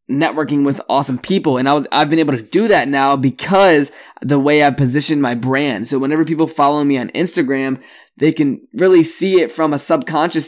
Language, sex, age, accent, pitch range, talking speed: English, male, 20-39, American, 135-160 Hz, 205 wpm